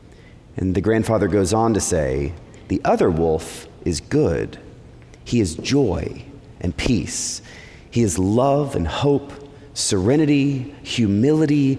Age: 30-49